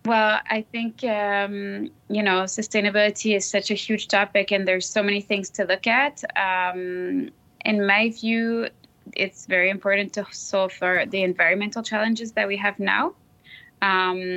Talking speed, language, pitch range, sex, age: 160 wpm, English, 175-200 Hz, female, 20-39